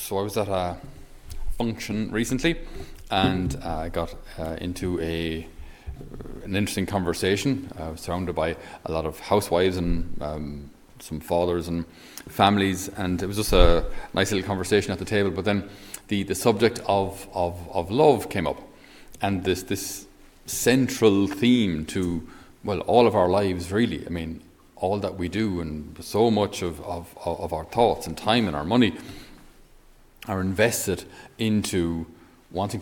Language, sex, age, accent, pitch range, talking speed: English, male, 40-59, Irish, 85-105 Hz, 160 wpm